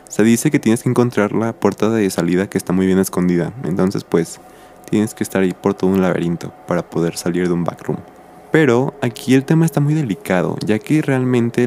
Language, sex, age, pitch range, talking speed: Spanish, male, 20-39, 95-115 Hz, 210 wpm